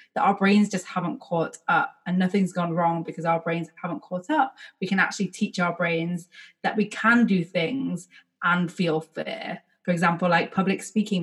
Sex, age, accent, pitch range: female, 20-39, British, 170-210 Hz